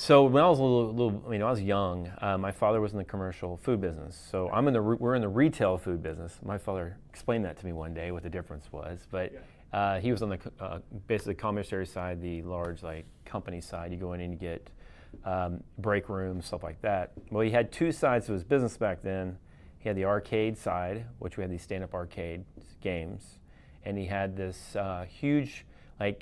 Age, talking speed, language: 30-49, 235 wpm, English